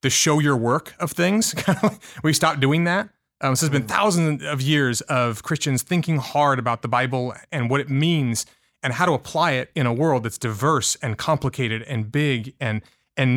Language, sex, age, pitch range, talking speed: English, male, 30-49, 125-165 Hz, 200 wpm